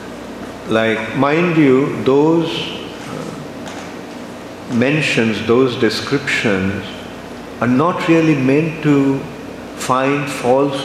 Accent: Indian